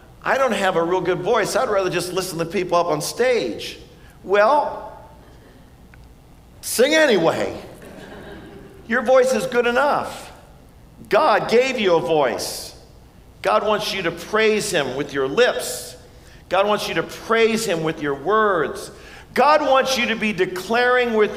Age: 50-69